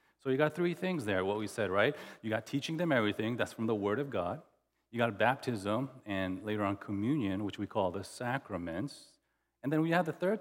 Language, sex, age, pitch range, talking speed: English, male, 40-59, 110-155 Hz, 225 wpm